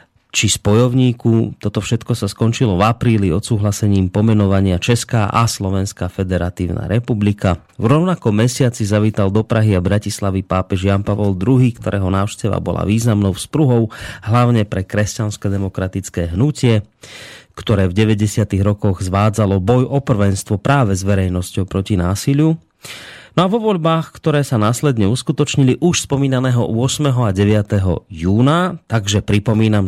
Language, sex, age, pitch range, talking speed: Slovak, male, 30-49, 100-120 Hz, 135 wpm